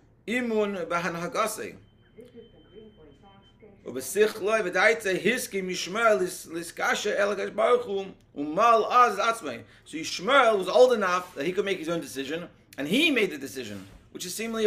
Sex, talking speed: male, 80 wpm